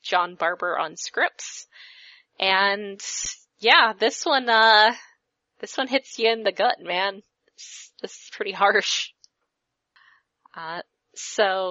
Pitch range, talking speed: 170-205 Hz, 120 wpm